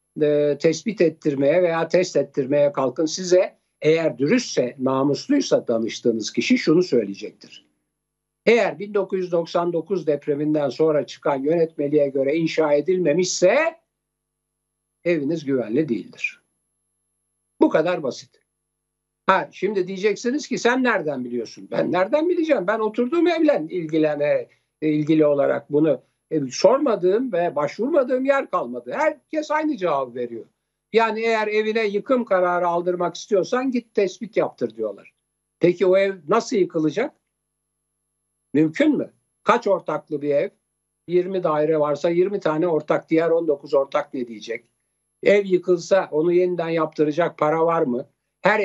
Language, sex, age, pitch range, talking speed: Turkish, male, 60-79, 145-205 Hz, 120 wpm